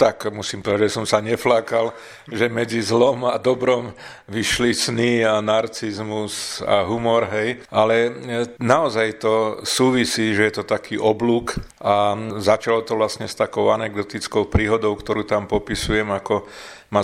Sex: male